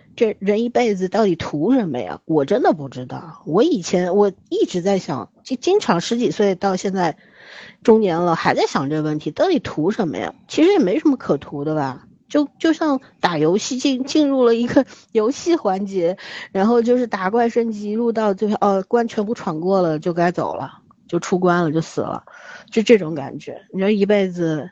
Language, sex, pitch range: Chinese, female, 165-220 Hz